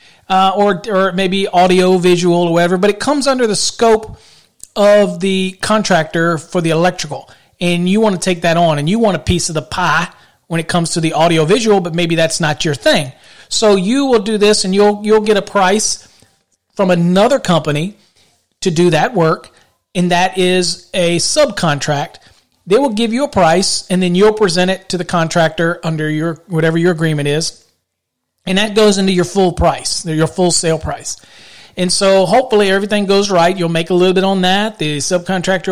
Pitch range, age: 165-205 Hz, 40-59